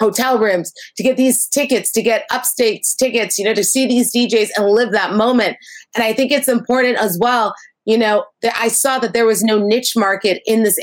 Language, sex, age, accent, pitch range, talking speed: English, female, 30-49, American, 195-240 Hz, 220 wpm